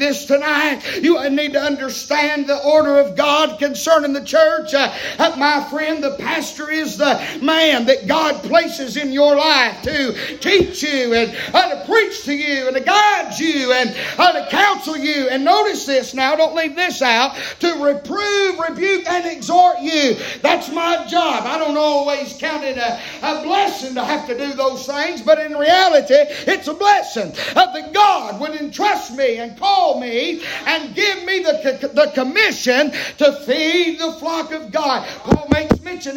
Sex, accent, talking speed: male, American, 175 wpm